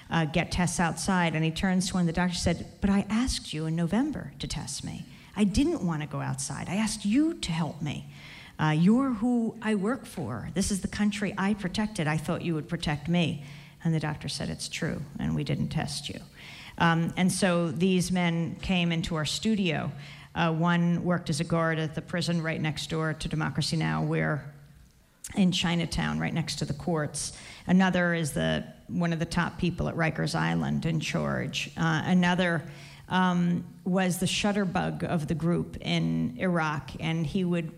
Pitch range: 155-180 Hz